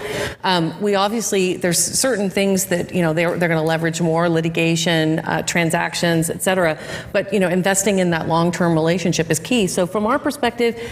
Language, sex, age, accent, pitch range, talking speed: English, female, 40-59, American, 170-215 Hz, 190 wpm